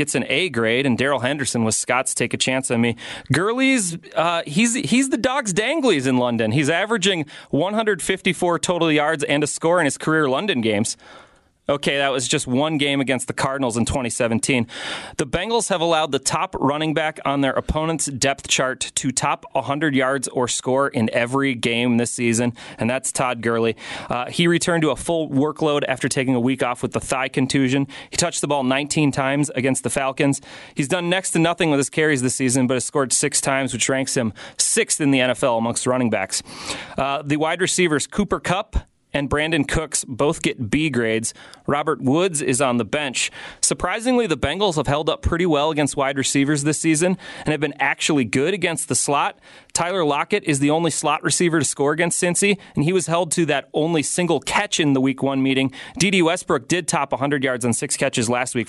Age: 30-49